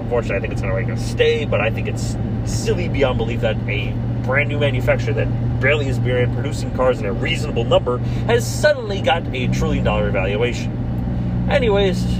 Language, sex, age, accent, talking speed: English, male, 30-49, American, 190 wpm